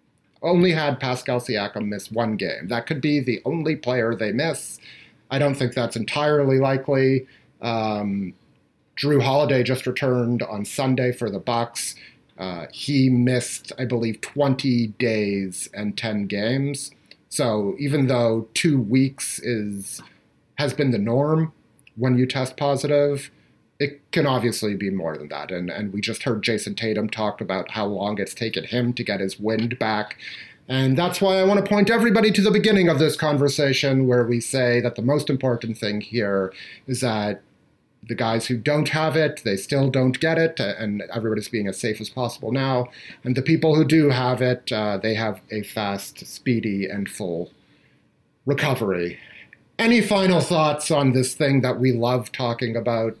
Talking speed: 170 wpm